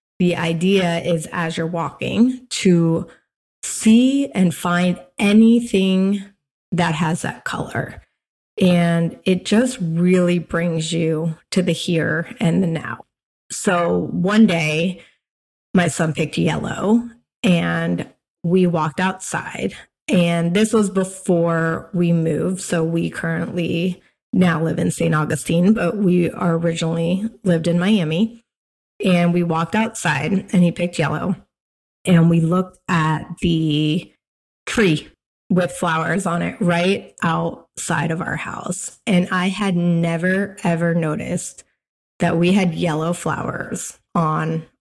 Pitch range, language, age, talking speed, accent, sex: 165-190 Hz, English, 30-49, 125 wpm, American, female